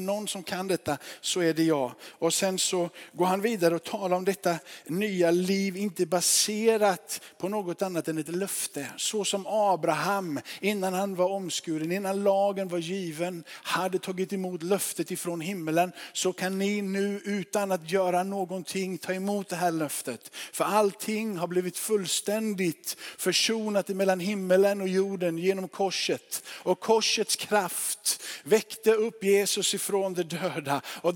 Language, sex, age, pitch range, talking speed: Swedish, male, 50-69, 175-205 Hz, 155 wpm